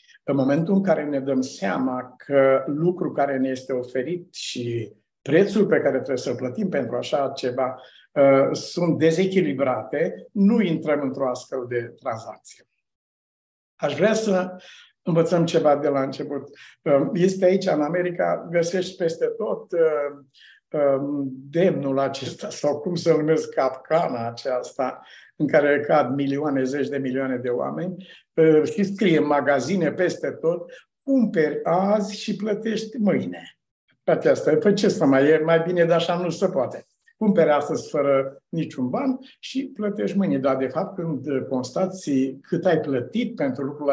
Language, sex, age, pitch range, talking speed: Romanian, male, 60-79, 135-180 Hz, 150 wpm